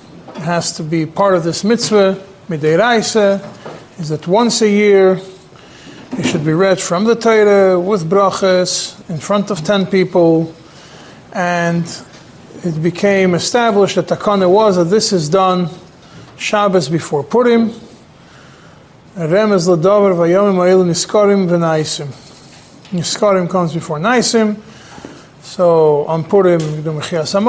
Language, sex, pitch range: English, male, 170-205 Hz